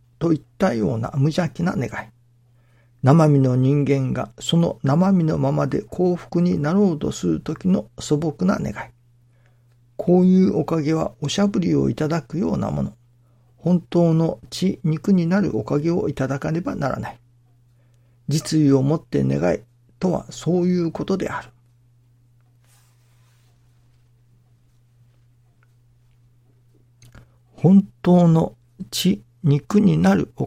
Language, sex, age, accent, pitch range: Japanese, male, 50-69, native, 120-160 Hz